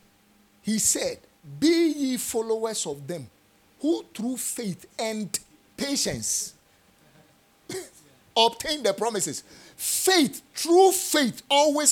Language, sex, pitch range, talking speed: English, male, 195-310 Hz, 95 wpm